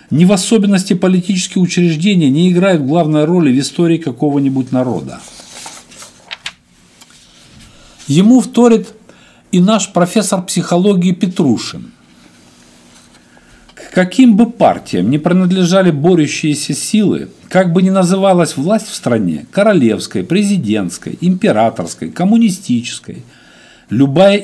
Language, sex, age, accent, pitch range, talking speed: Russian, male, 50-69, native, 135-185 Hz, 100 wpm